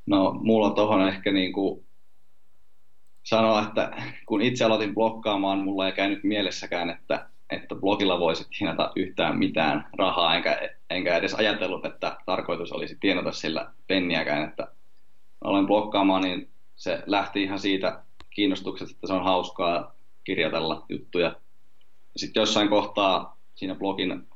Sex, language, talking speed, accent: male, Finnish, 135 wpm, native